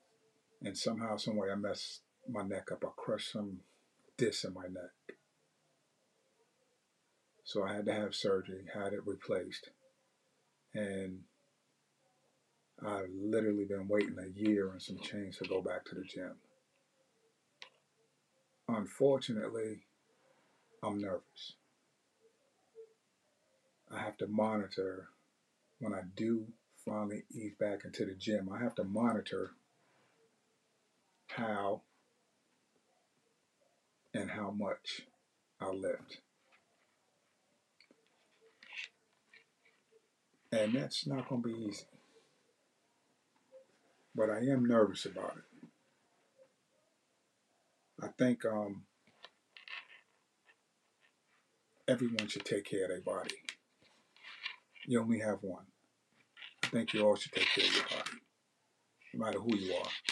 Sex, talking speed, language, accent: male, 110 wpm, English, American